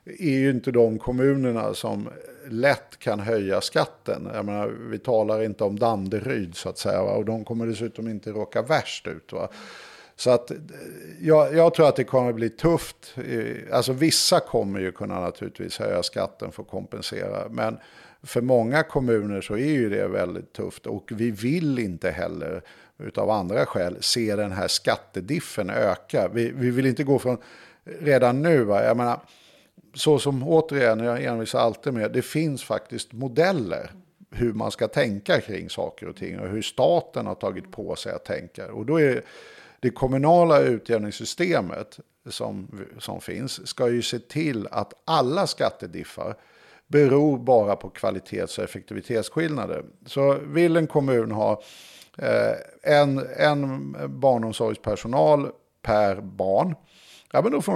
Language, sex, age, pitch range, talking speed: Swedish, male, 50-69, 110-140 Hz, 155 wpm